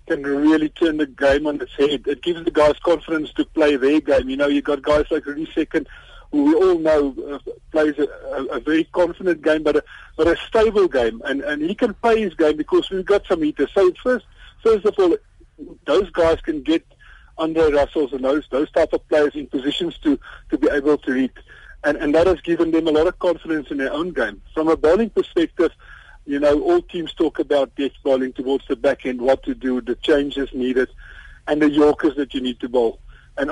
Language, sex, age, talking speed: English, male, 50-69, 220 wpm